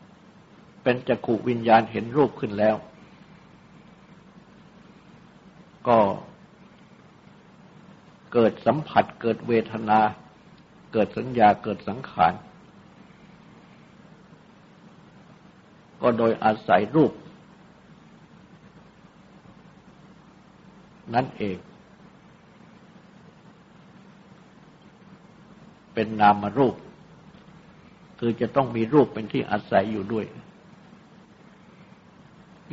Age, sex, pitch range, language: 60-79, male, 135-200 Hz, Thai